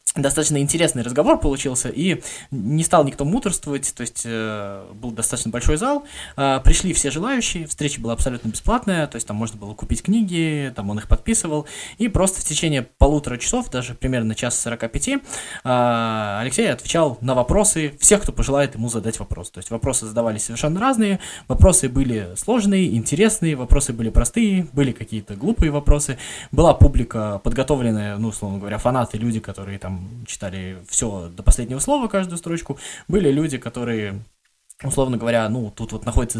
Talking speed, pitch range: 165 wpm, 115-160 Hz